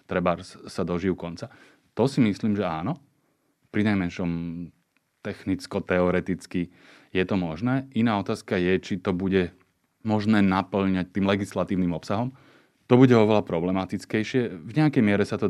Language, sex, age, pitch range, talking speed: Slovak, male, 30-49, 90-100 Hz, 135 wpm